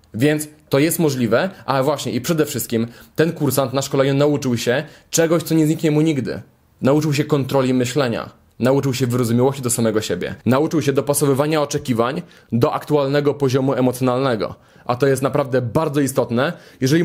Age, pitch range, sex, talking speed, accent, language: 20-39, 130-155 Hz, male, 160 wpm, native, Polish